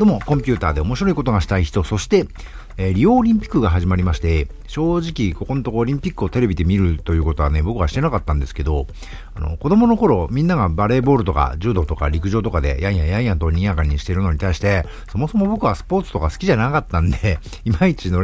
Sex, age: male, 50-69